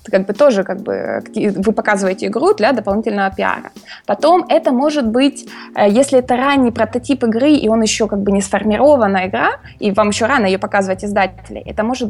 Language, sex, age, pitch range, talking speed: Russian, female, 20-39, 200-260 Hz, 185 wpm